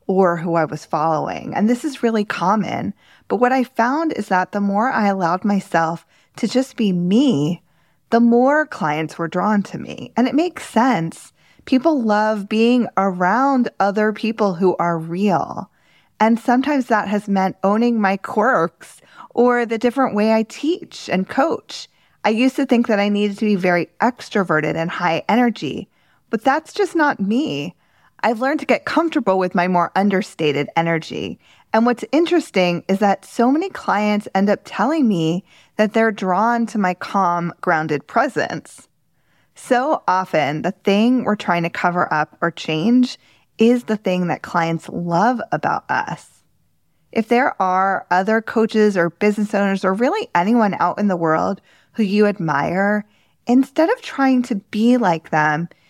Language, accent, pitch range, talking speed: English, American, 180-240 Hz, 165 wpm